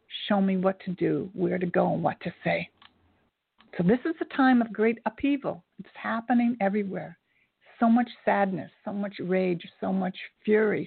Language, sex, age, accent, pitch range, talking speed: English, female, 60-79, American, 195-235 Hz, 175 wpm